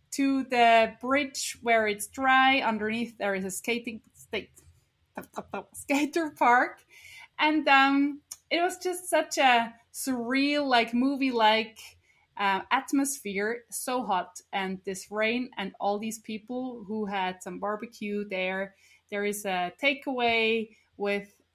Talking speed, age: 125 wpm, 20-39